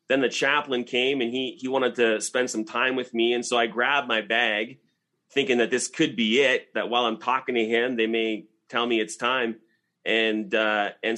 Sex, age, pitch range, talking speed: male, 30-49, 110-125 Hz, 220 wpm